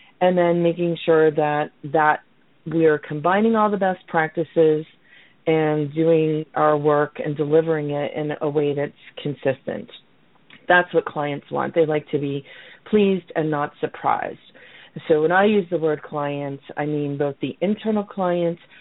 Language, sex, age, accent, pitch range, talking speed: English, female, 40-59, American, 150-185 Hz, 160 wpm